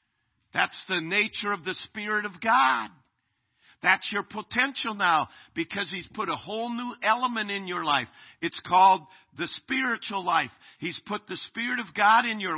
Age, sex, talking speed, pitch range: 50-69, male, 165 wpm, 130-215 Hz